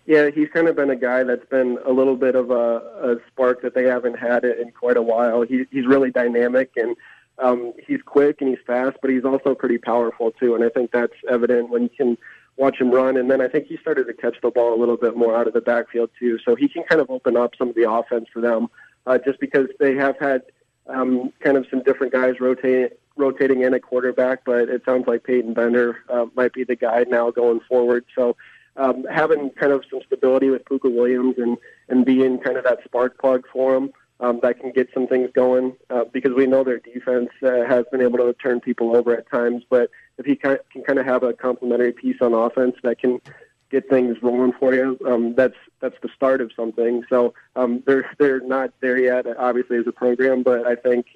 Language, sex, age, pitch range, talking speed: English, male, 20-39, 120-130 Hz, 235 wpm